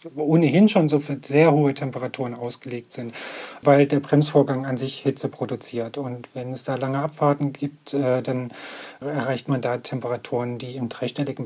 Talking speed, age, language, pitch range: 170 wpm, 40-59, German, 130-150 Hz